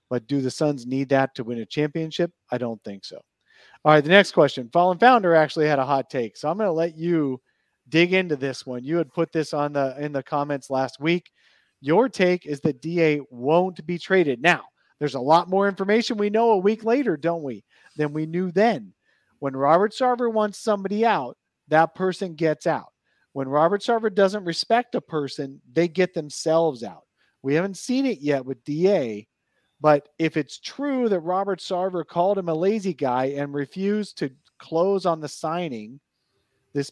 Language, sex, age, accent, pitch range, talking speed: English, male, 40-59, American, 145-200 Hz, 195 wpm